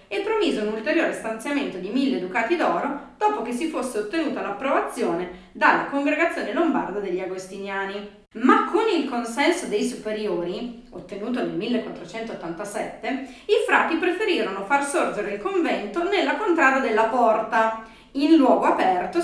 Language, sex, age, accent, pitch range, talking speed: Italian, female, 30-49, native, 205-320 Hz, 135 wpm